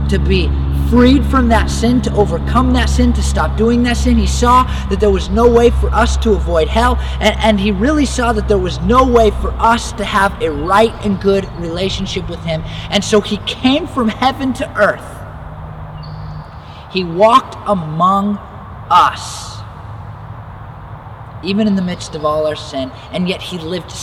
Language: English